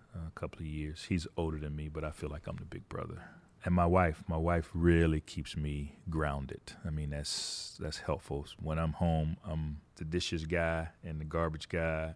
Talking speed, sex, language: 200 wpm, male, English